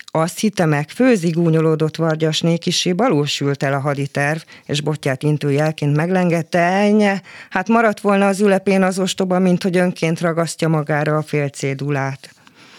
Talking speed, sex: 140 wpm, female